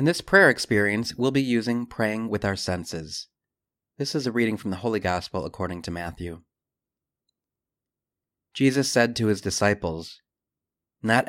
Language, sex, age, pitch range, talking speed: English, male, 30-49, 95-125 Hz, 150 wpm